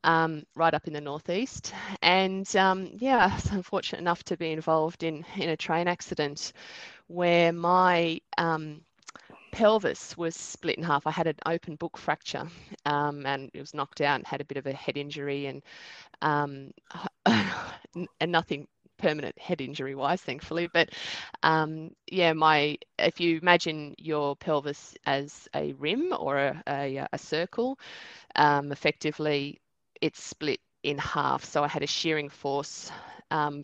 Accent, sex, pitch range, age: Australian, female, 145-170 Hz, 20-39